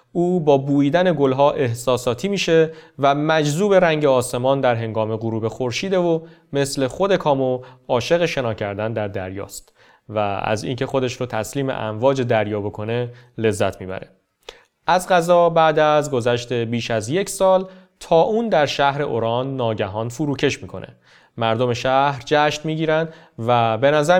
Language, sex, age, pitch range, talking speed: Persian, male, 30-49, 115-155 Hz, 145 wpm